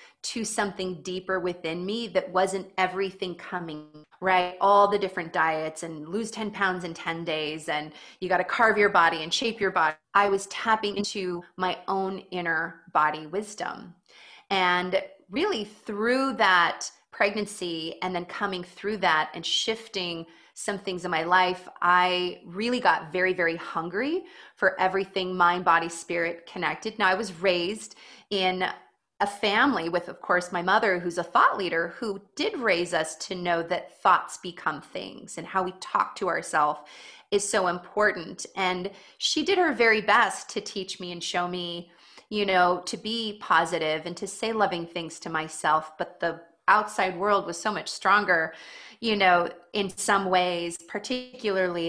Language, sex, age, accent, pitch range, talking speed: English, female, 30-49, American, 175-205 Hz, 165 wpm